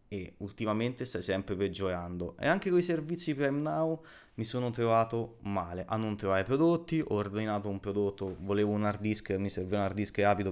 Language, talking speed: Italian, 195 wpm